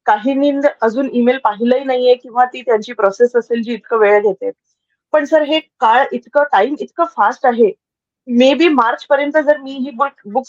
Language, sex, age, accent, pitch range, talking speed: Marathi, female, 20-39, native, 240-295 Hz, 175 wpm